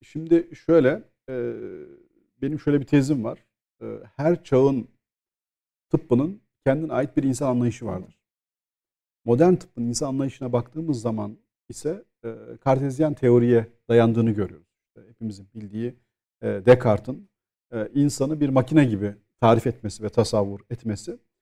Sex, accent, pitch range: male, native, 115-145 Hz